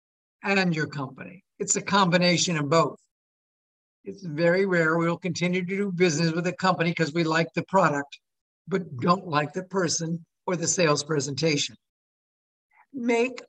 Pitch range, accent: 160-210 Hz, American